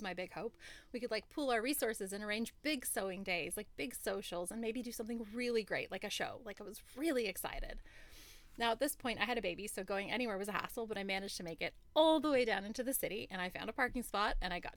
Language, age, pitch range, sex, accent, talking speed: English, 20-39, 195-245 Hz, female, American, 270 wpm